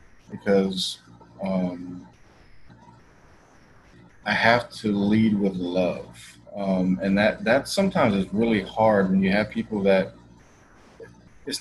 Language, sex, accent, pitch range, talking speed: English, male, American, 90-115 Hz, 115 wpm